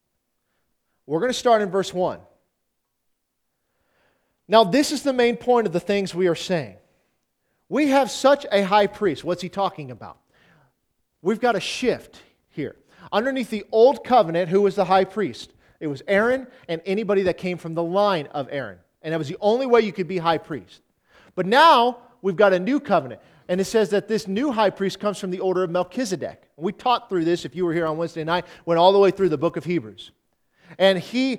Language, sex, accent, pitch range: English, male, American, 170-230 Hz